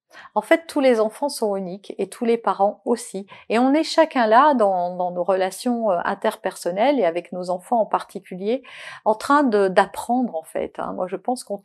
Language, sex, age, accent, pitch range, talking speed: French, female, 40-59, French, 200-260 Hz, 195 wpm